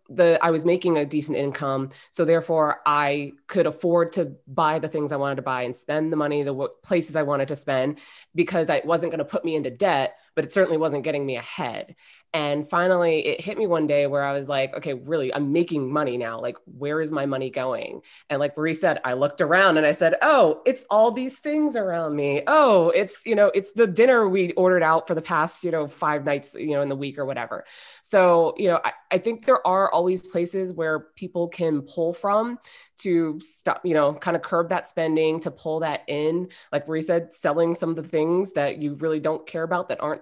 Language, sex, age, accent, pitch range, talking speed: English, female, 20-39, American, 145-175 Hz, 230 wpm